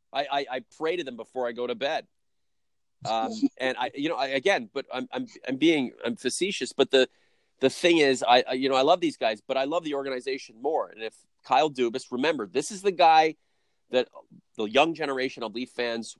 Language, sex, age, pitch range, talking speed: English, male, 40-59, 110-135 Hz, 220 wpm